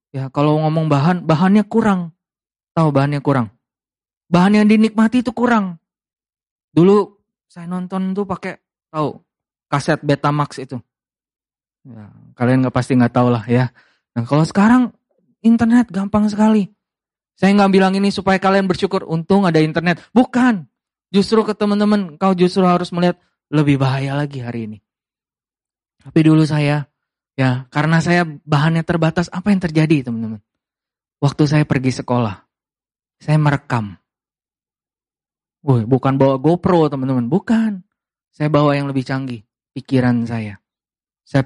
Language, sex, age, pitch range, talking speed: Indonesian, male, 20-39, 130-180 Hz, 135 wpm